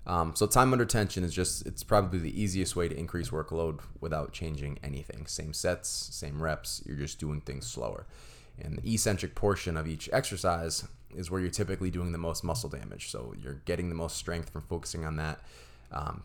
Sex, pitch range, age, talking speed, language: male, 80-95 Hz, 20-39, 200 wpm, English